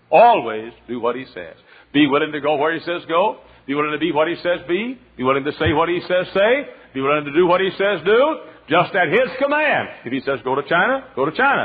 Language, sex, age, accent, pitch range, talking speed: English, male, 60-79, American, 115-175 Hz, 260 wpm